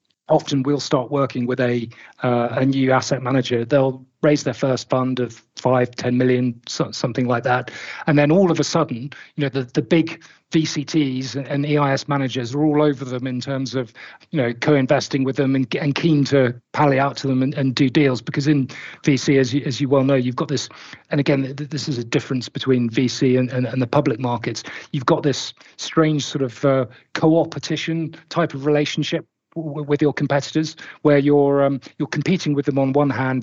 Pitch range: 130-150 Hz